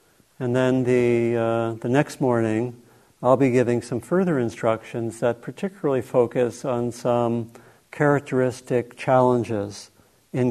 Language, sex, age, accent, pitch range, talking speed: English, male, 50-69, American, 115-135 Hz, 120 wpm